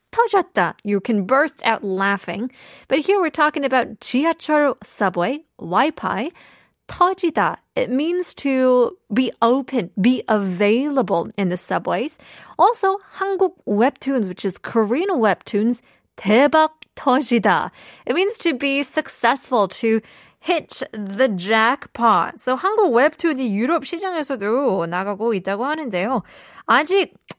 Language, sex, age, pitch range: Korean, female, 20-39, 210-295 Hz